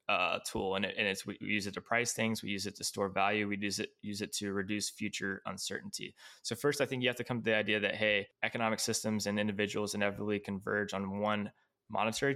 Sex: male